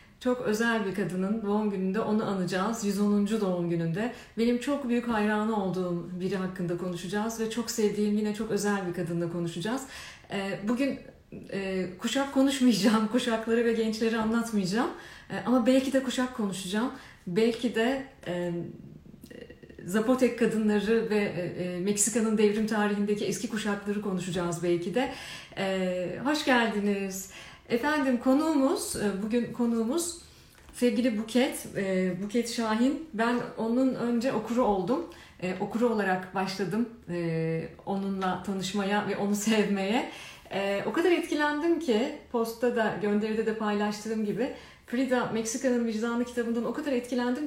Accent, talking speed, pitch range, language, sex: native, 120 wpm, 195-245 Hz, Turkish, female